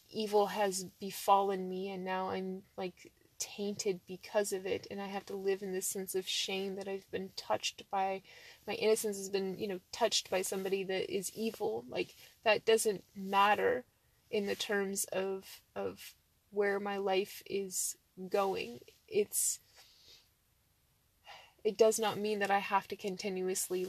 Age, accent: 20-39, American